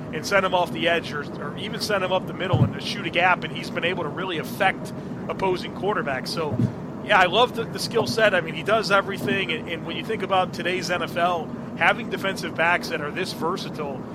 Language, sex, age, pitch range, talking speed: English, male, 30-49, 170-195 Hz, 235 wpm